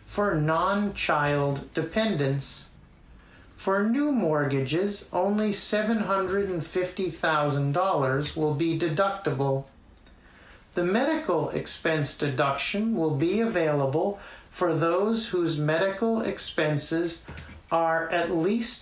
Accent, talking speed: American, 80 wpm